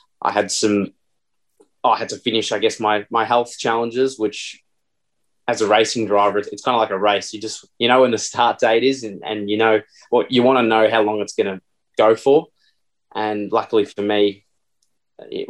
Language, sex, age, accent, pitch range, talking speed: English, male, 20-39, Australian, 100-110 Hz, 220 wpm